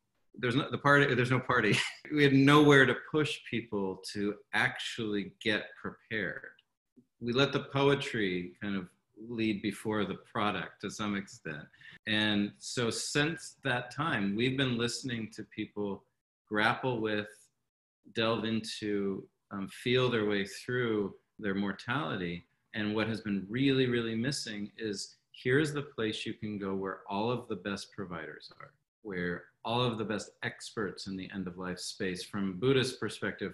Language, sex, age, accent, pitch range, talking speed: English, male, 40-59, American, 100-125 Hz, 150 wpm